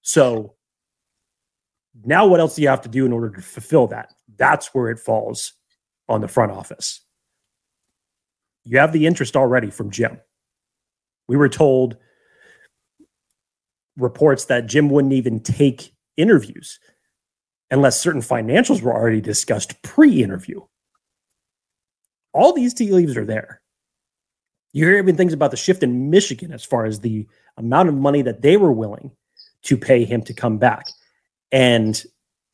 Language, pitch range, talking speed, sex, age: English, 115-140 Hz, 145 wpm, male, 30-49